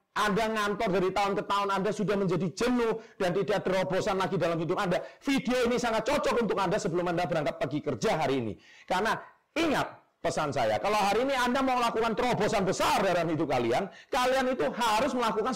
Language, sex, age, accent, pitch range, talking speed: Indonesian, male, 40-59, native, 180-265 Hz, 190 wpm